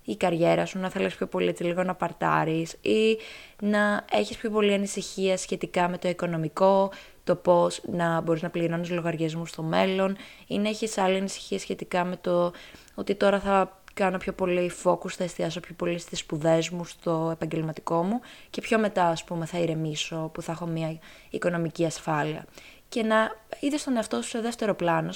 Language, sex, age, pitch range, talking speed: Greek, female, 20-39, 160-190 Hz, 180 wpm